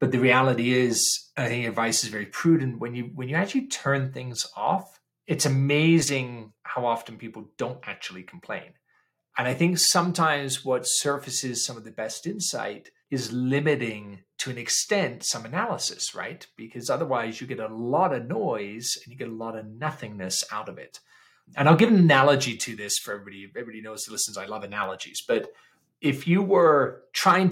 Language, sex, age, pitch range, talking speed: English, male, 30-49, 115-155 Hz, 185 wpm